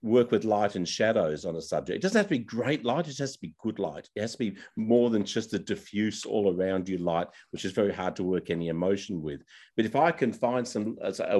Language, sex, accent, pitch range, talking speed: English, male, Australian, 90-110 Hz, 265 wpm